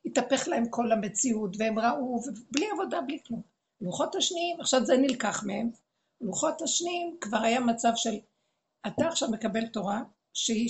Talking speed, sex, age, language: 145 wpm, female, 60-79, Hebrew